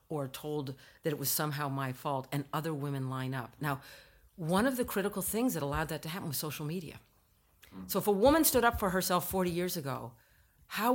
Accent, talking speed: American, 215 wpm